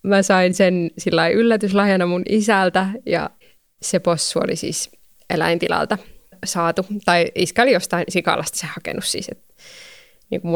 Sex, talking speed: female, 135 wpm